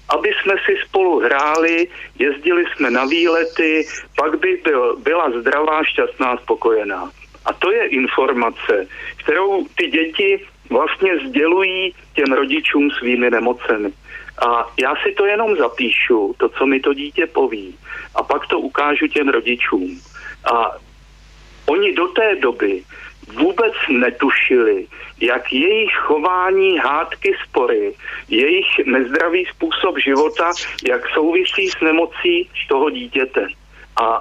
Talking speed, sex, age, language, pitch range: 120 wpm, male, 50-69, Slovak, 295-420 Hz